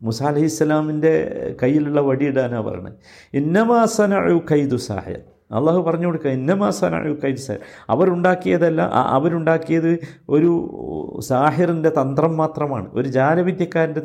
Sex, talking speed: male, 90 wpm